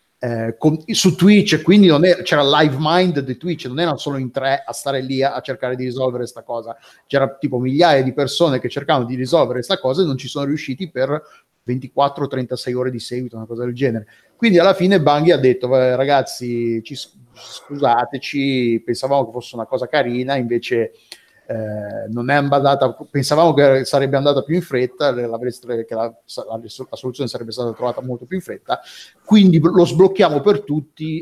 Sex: male